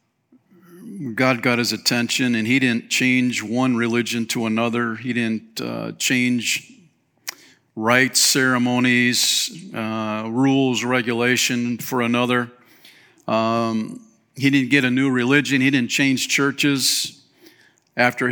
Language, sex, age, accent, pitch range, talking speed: English, male, 50-69, American, 110-125 Hz, 115 wpm